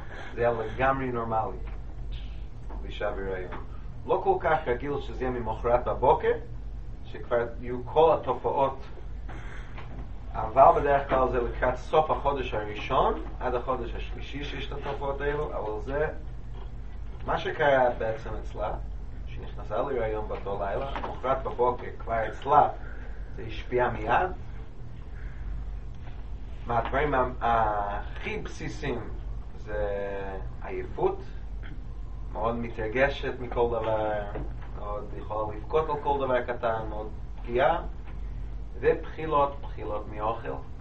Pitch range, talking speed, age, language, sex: 100-130 Hz, 105 wpm, 30-49, Hebrew, male